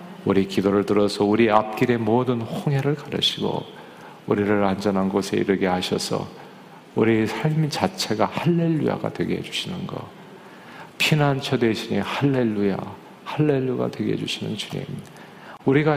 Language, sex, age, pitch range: Korean, male, 50-69, 100-135 Hz